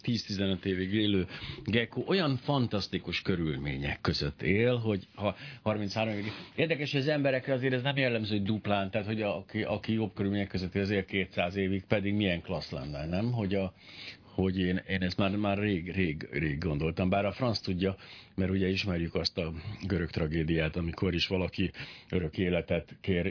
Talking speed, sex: 165 wpm, male